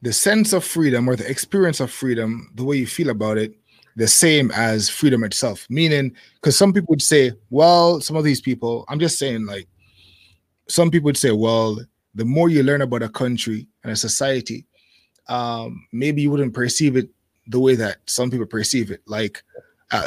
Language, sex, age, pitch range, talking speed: English, male, 20-39, 115-155 Hz, 195 wpm